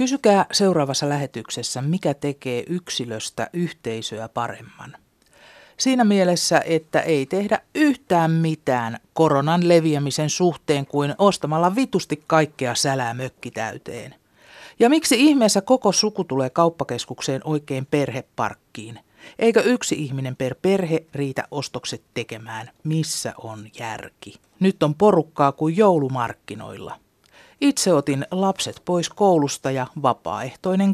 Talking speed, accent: 110 wpm, native